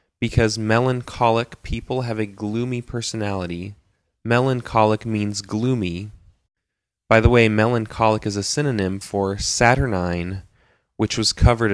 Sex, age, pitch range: male, 20-39, 95-115 Hz